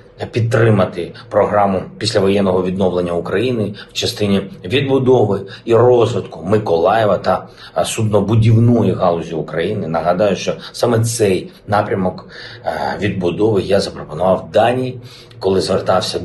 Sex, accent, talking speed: male, native, 95 wpm